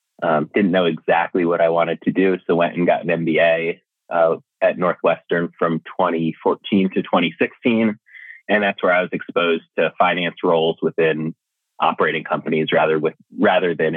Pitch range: 80-95 Hz